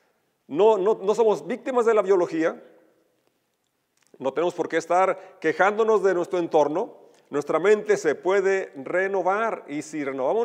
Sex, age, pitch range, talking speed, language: male, 40-59, 160-230 Hz, 145 wpm, Spanish